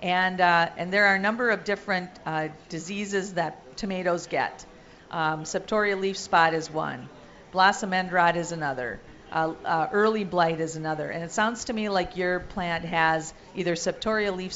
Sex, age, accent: female, 50-69, American